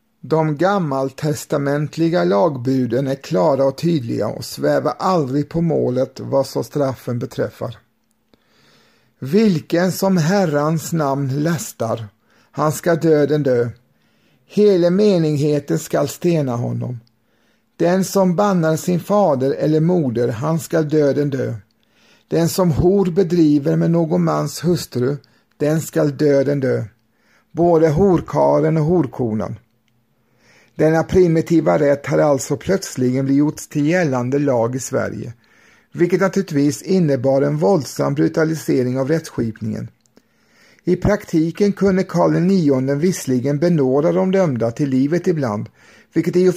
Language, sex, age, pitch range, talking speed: Swedish, male, 50-69, 130-175 Hz, 120 wpm